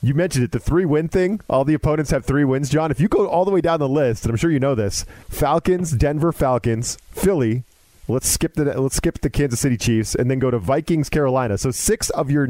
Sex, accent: male, American